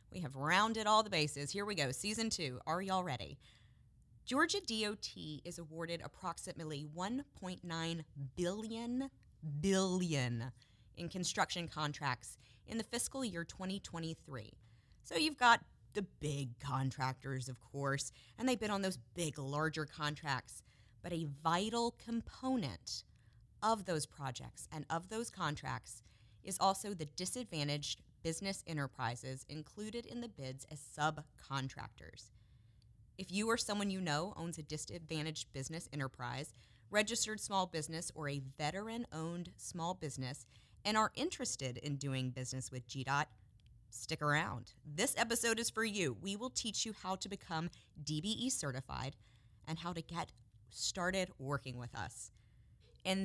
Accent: American